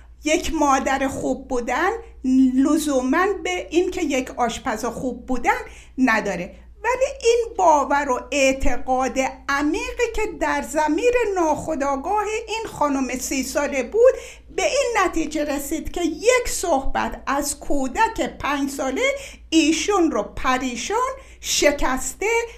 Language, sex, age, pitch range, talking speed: Persian, female, 50-69, 270-405 Hz, 110 wpm